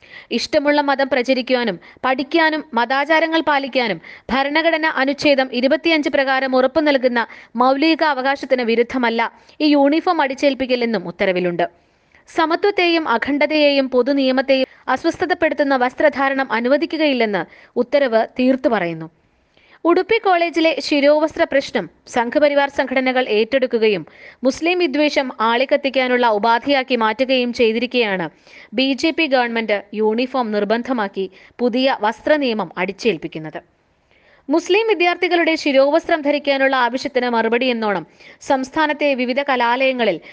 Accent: native